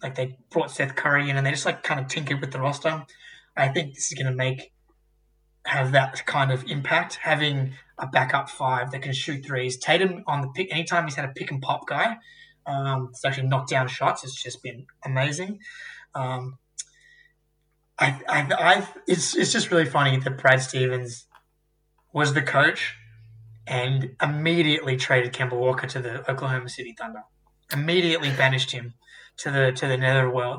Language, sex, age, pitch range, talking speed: English, male, 20-39, 130-150 Hz, 175 wpm